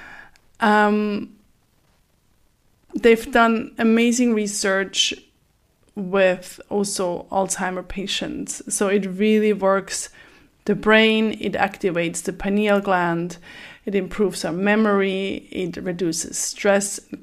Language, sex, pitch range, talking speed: English, female, 185-225 Hz, 100 wpm